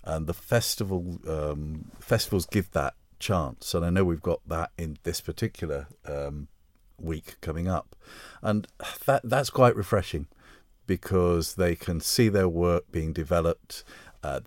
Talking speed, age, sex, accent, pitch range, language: 145 wpm, 50-69, male, British, 80-100 Hz, English